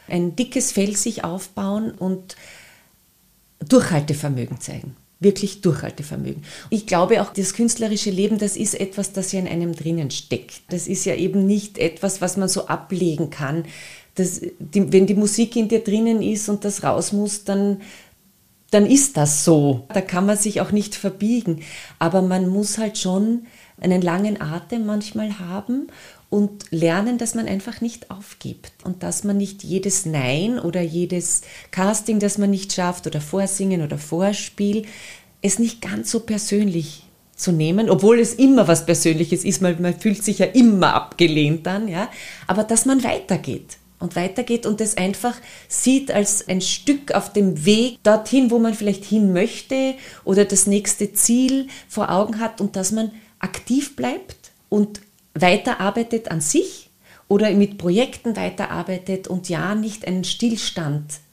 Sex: female